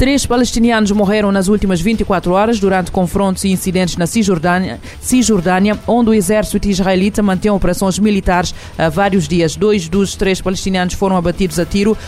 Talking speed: 160 wpm